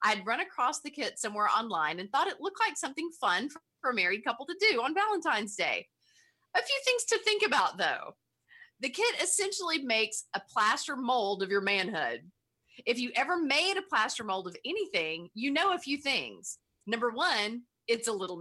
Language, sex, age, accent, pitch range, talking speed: English, female, 30-49, American, 215-335 Hz, 190 wpm